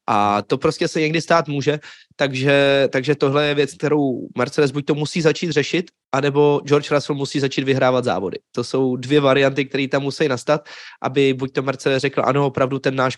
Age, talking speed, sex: 20-39, 195 wpm, male